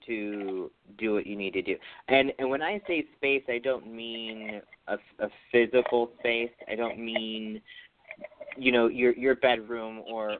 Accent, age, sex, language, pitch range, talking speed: American, 30-49, male, English, 110-150 Hz, 165 wpm